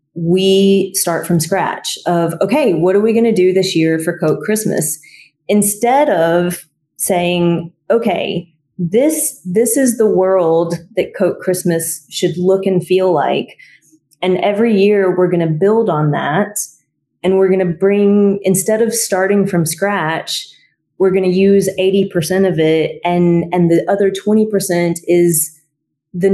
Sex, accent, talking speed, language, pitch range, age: female, American, 155 wpm, English, 165-210 Hz, 30-49